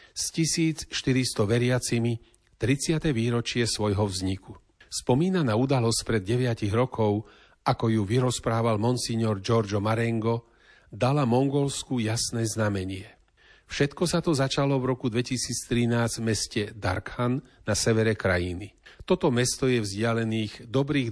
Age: 40-59